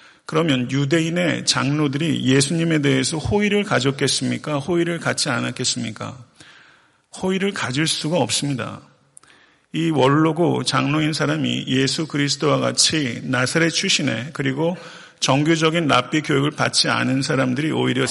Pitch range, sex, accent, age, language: 130-165 Hz, male, native, 40-59, Korean